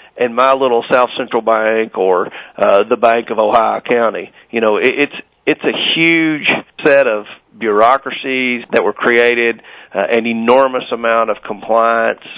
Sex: male